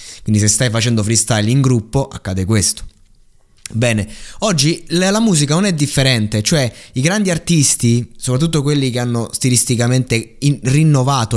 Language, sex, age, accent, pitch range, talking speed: Italian, male, 20-39, native, 110-145 Hz, 135 wpm